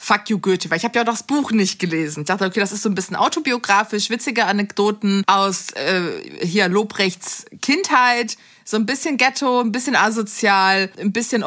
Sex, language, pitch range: female, German, 190-240 Hz